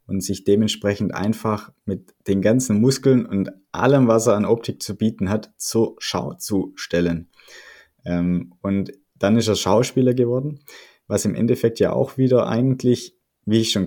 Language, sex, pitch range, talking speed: German, male, 90-115 Hz, 165 wpm